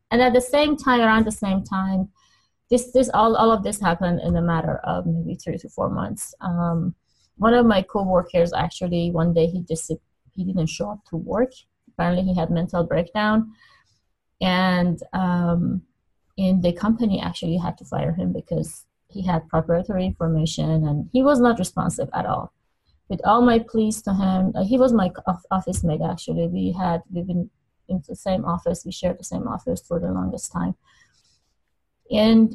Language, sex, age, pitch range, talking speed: English, female, 20-39, 170-215 Hz, 180 wpm